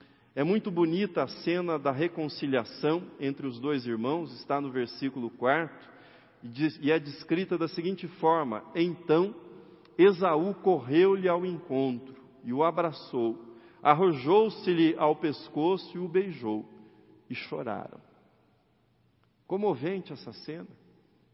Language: Portuguese